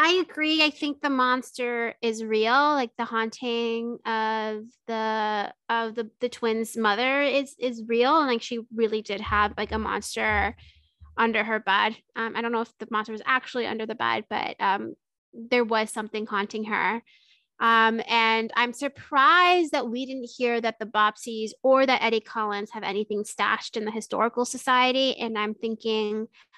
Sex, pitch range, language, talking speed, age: female, 220-260 Hz, English, 175 wpm, 20-39